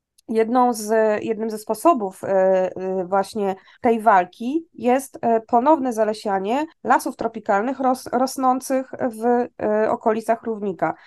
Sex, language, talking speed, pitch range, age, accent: female, Polish, 80 wpm, 200-240 Hz, 20-39, native